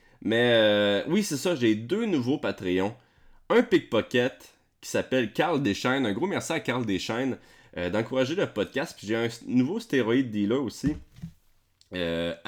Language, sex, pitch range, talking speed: French, male, 95-130 Hz, 160 wpm